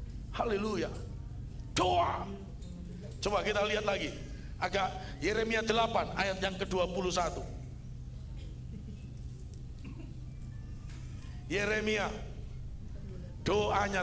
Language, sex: Indonesian, male